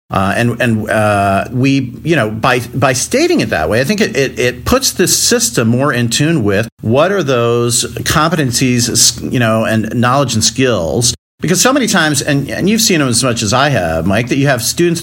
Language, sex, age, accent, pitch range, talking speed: English, male, 50-69, American, 110-135 Hz, 215 wpm